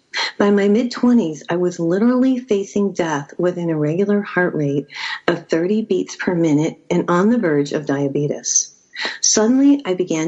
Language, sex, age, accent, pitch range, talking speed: English, female, 40-59, American, 155-210 Hz, 160 wpm